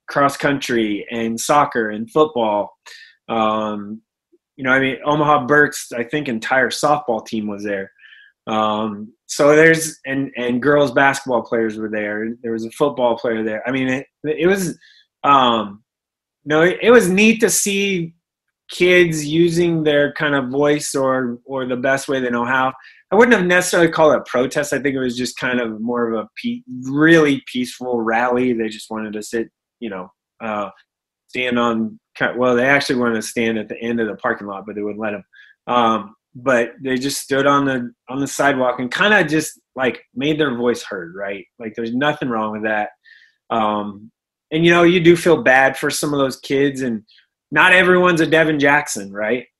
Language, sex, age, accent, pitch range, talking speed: English, male, 20-39, American, 115-155 Hz, 195 wpm